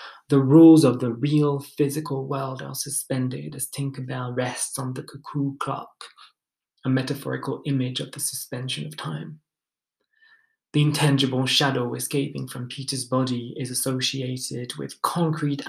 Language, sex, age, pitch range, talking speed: English, male, 20-39, 130-150 Hz, 135 wpm